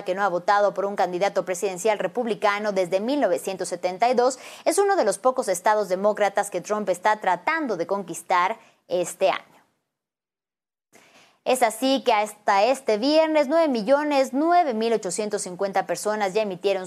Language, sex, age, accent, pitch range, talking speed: English, female, 20-39, Mexican, 190-255 Hz, 140 wpm